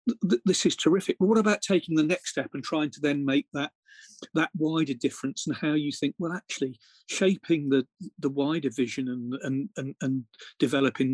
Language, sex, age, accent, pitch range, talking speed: English, male, 40-59, British, 135-185 Hz, 185 wpm